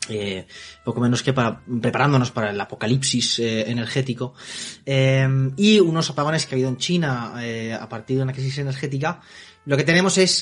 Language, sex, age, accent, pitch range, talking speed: Spanish, male, 30-49, Spanish, 125-165 Hz, 175 wpm